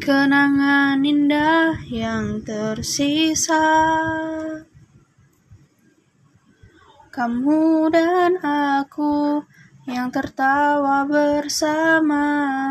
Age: 20-39